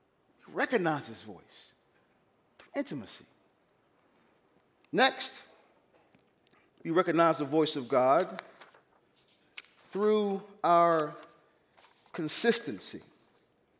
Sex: male